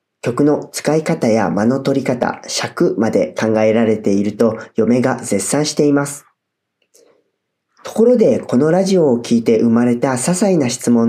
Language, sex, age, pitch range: Japanese, male, 40-59, 120-175 Hz